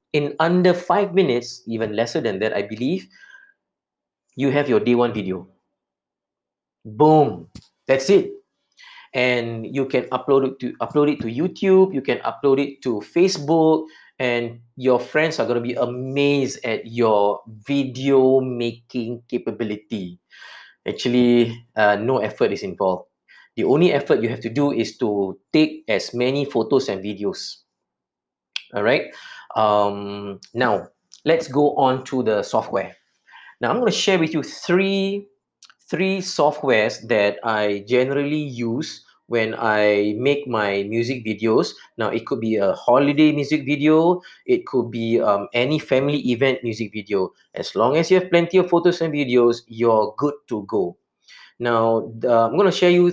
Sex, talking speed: male, 150 wpm